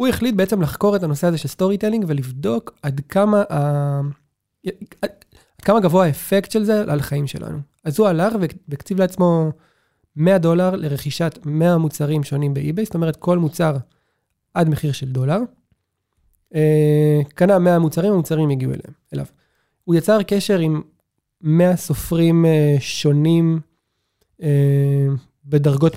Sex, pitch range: male, 145-180 Hz